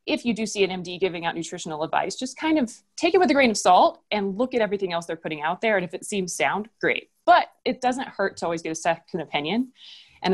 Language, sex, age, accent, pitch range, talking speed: English, female, 20-39, American, 170-230 Hz, 265 wpm